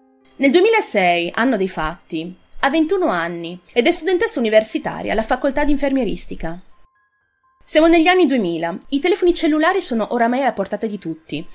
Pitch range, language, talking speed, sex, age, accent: 190-295 Hz, Italian, 150 wpm, female, 30-49, native